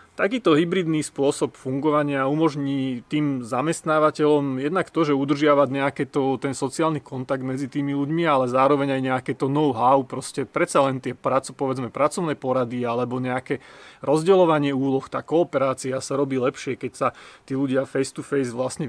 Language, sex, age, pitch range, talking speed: Slovak, male, 30-49, 135-155 Hz, 155 wpm